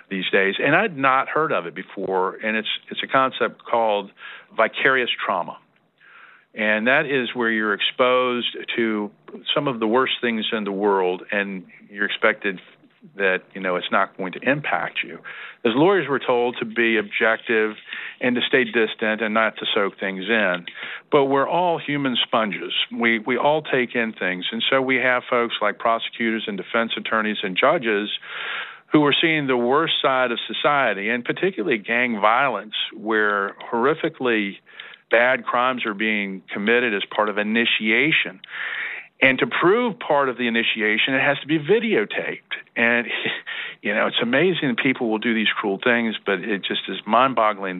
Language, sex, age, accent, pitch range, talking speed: English, male, 50-69, American, 110-135 Hz, 170 wpm